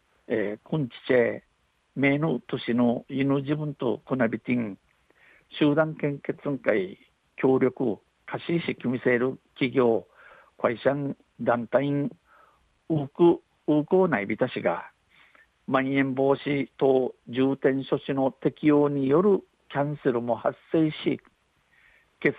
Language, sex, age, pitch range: Japanese, male, 60-79, 125-145 Hz